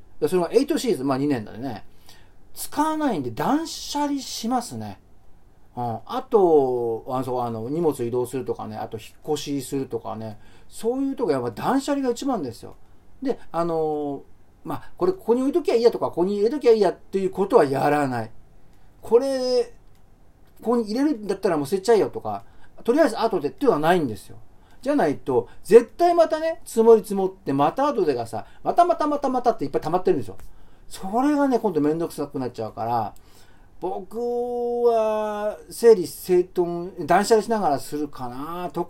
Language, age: Japanese, 40-59